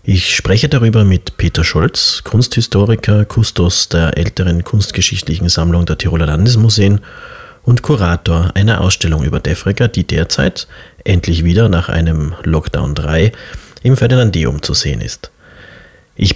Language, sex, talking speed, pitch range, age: German, male, 130 wpm, 85-105 Hz, 40-59